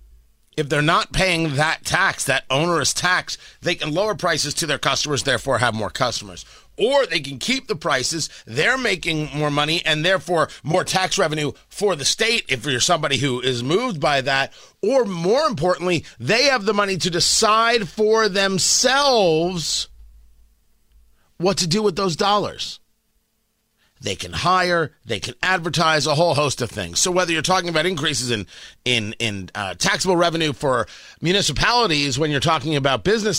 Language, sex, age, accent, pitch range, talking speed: English, male, 30-49, American, 140-190 Hz, 165 wpm